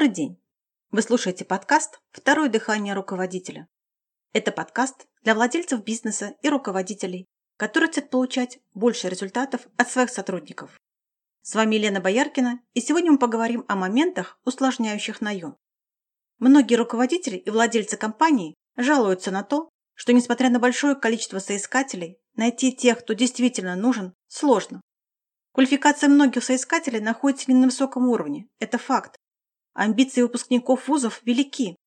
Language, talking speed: Russian, 130 wpm